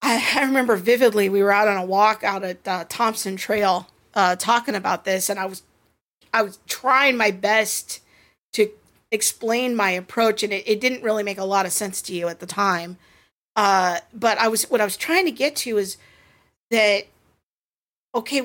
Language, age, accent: English, 40-59, American